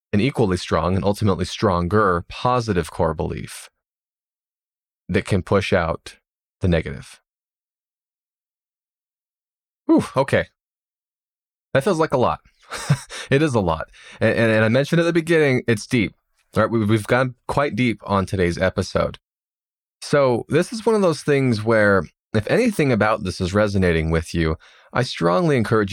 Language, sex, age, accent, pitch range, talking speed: English, male, 20-39, American, 95-125 Hz, 140 wpm